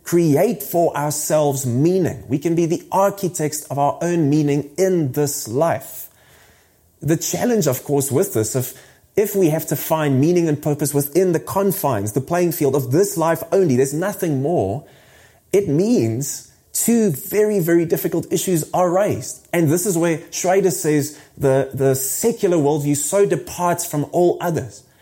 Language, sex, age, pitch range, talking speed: English, male, 30-49, 140-180 Hz, 165 wpm